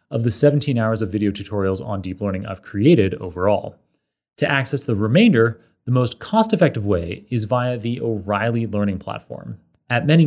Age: 30-49